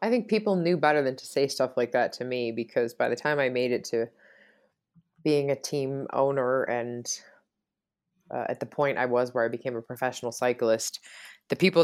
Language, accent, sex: English, American, female